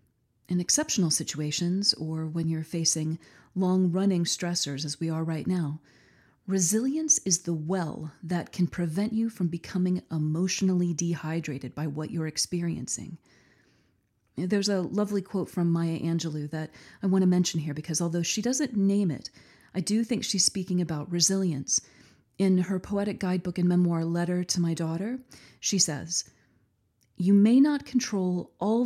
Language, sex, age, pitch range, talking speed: English, female, 30-49, 160-210 Hz, 150 wpm